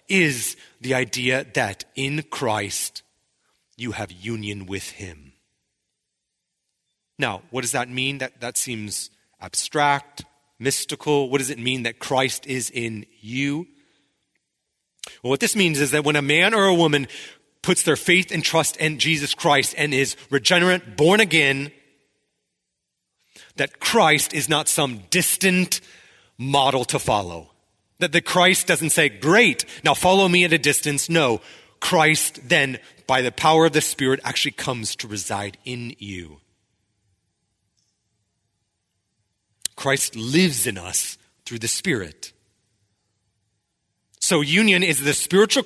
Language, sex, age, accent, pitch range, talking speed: English, male, 30-49, American, 105-155 Hz, 135 wpm